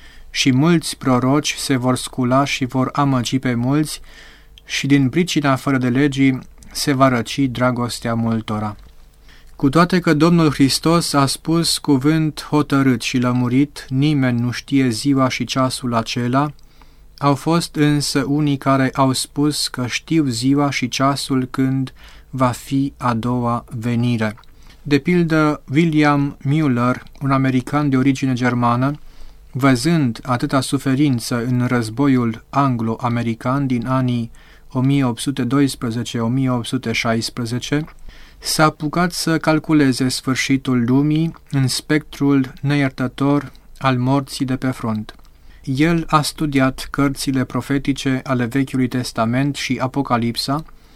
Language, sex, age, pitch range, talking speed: Romanian, male, 30-49, 125-145 Hz, 120 wpm